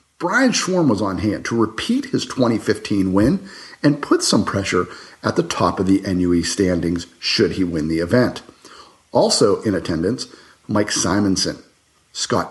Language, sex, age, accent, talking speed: English, male, 40-59, American, 155 wpm